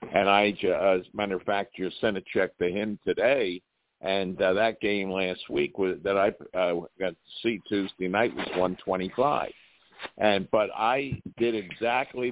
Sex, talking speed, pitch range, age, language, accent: male, 185 wpm, 95-115 Hz, 60-79, English, American